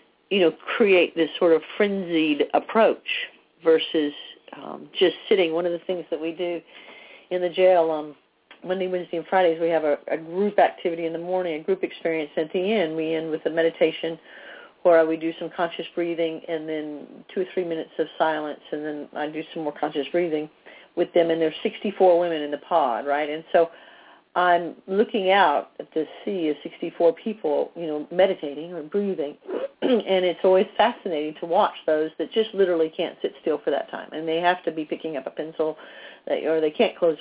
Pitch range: 155-180 Hz